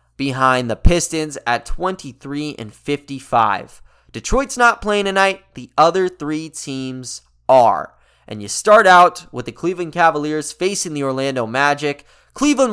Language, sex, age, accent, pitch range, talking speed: English, male, 20-39, American, 135-180 Hz, 135 wpm